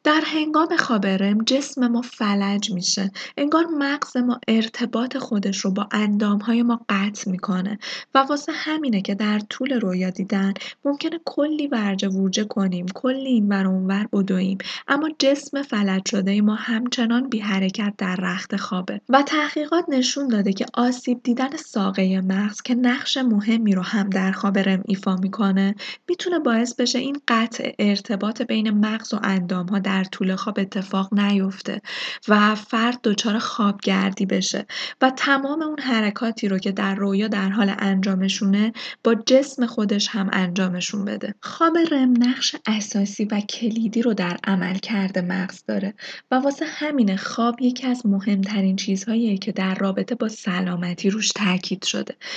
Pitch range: 195-250 Hz